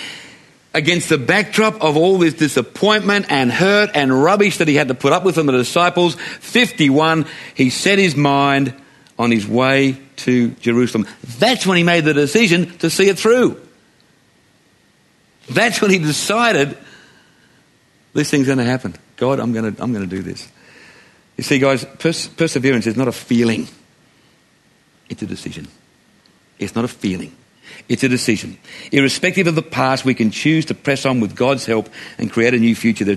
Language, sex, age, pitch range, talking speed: English, male, 50-69, 120-165 Hz, 170 wpm